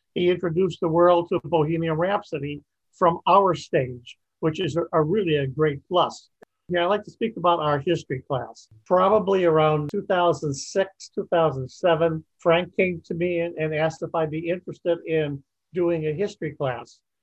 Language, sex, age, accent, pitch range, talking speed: English, male, 50-69, American, 155-180 Hz, 165 wpm